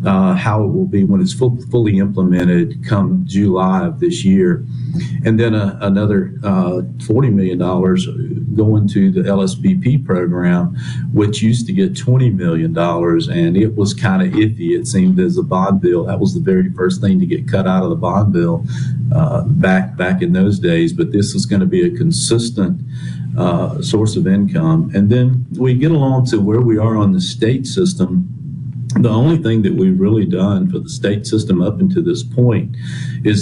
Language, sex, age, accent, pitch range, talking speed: English, male, 50-69, American, 95-145 Hz, 190 wpm